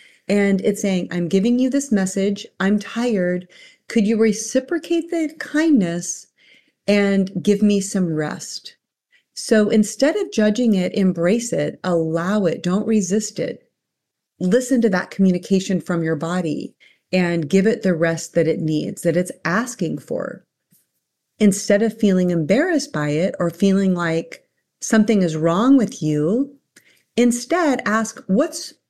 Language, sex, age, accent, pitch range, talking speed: English, female, 40-59, American, 180-235 Hz, 140 wpm